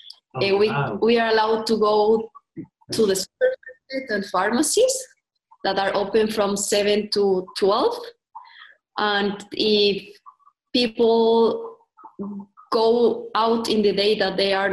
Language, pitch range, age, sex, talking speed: English, 200-255 Hz, 20-39, female, 120 wpm